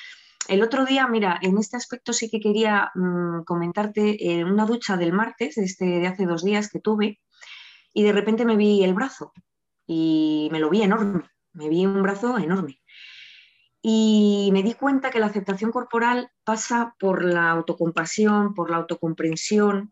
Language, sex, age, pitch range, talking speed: Spanish, female, 20-39, 175-225 Hz, 170 wpm